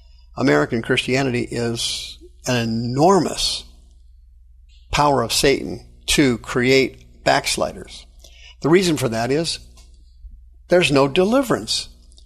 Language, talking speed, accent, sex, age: English, 95 wpm, American, male, 50-69